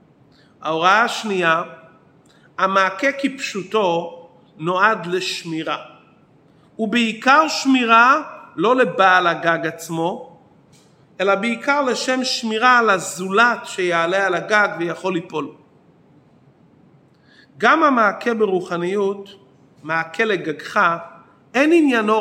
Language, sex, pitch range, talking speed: Hebrew, male, 185-235 Hz, 85 wpm